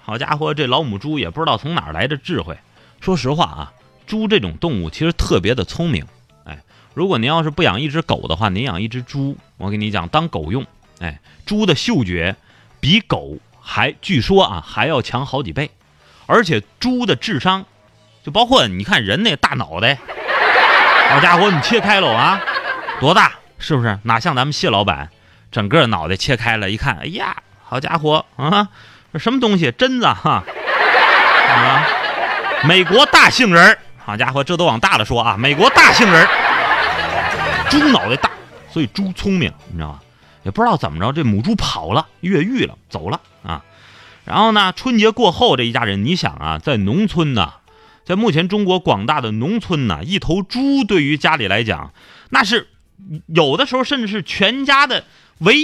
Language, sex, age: Chinese, male, 30-49